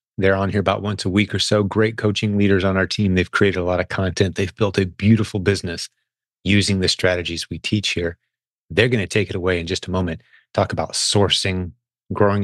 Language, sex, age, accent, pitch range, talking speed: English, male, 30-49, American, 95-115 Hz, 215 wpm